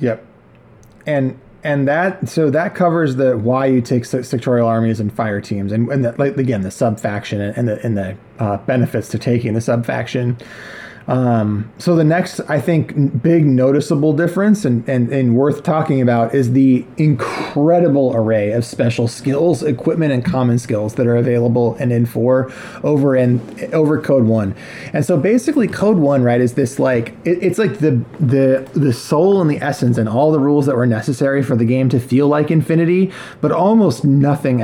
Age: 30-49